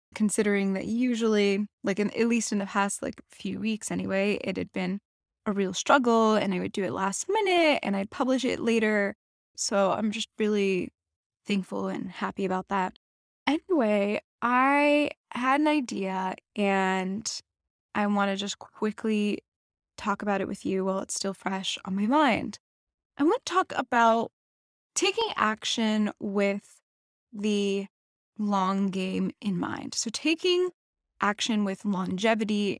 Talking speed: 150 wpm